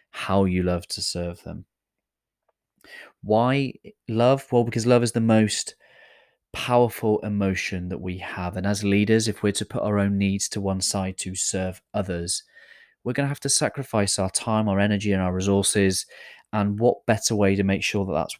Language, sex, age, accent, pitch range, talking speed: English, male, 30-49, British, 95-105 Hz, 185 wpm